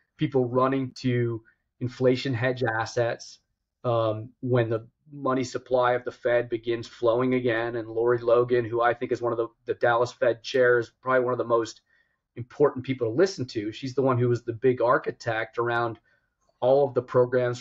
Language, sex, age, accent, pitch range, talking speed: English, male, 30-49, American, 115-130 Hz, 185 wpm